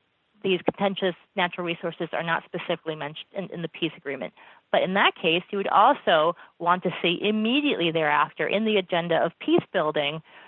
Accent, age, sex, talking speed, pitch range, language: American, 30-49, female, 180 wpm, 165-210 Hz, English